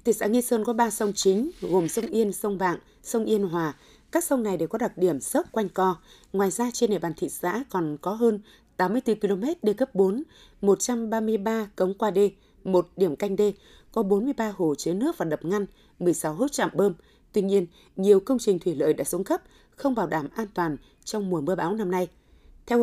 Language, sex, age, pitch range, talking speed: Vietnamese, female, 20-39, 180-225 Hz, 220 wpm